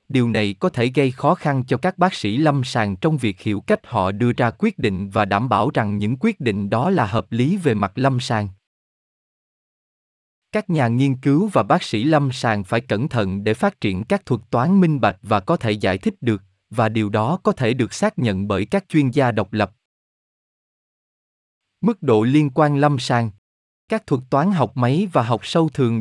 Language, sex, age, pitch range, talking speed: Vietnamese, male, 20-39, 105-150 Hz, 210 wpm